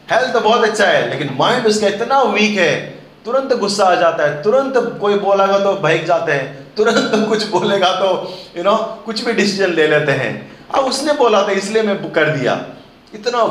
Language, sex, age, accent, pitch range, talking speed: Hindi, male, 30-49, native, 150-215 Hz, 210 wpm